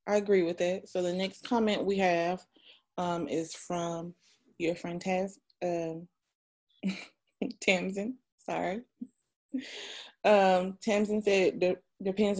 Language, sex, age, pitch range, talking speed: English, female, 20-39, 165-195 Hz, 110 wpm